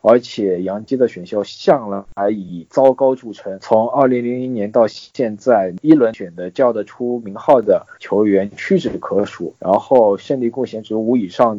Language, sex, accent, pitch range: Chinese, male, native, 100-125 Hz